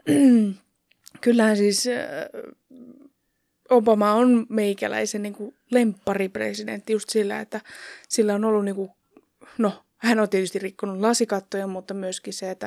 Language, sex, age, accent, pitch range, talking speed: Finnish, female, 20-39, native, 180-225 Hz, 115 wpm